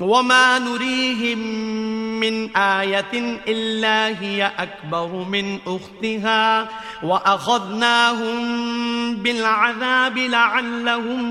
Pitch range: 200-240 Hz